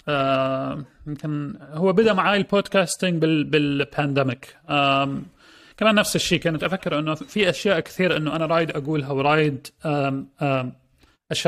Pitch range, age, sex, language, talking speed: 140-170 Hz, 30-49, male, Arabic, 125 wpm